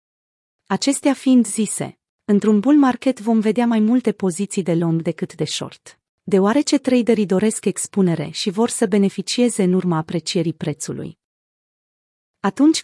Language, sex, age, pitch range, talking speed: Romanian, female, 30-49, 185-240 Hz, 135 wpm